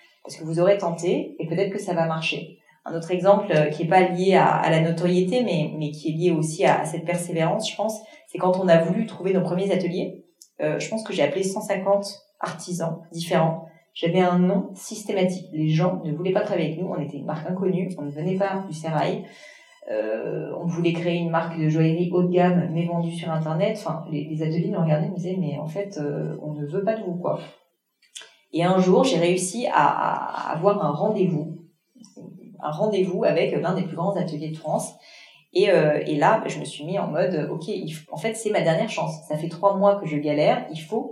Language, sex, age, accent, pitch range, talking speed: French, female, 30-49, French, 160-195 Hz, 225 wpm